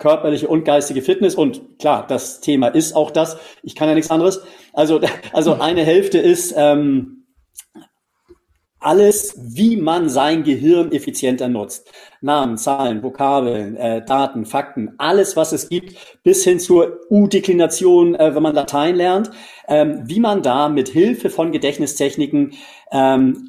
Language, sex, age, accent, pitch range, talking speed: German, male, 40-59, German, 135-190 Hz, 145 wpm